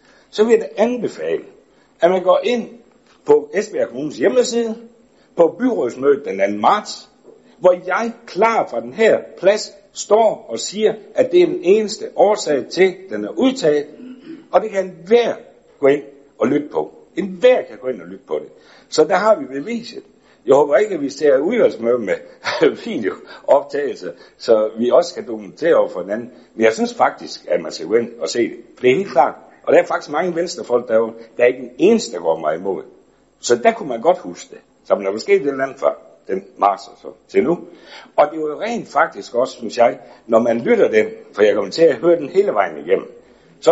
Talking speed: 215 wpm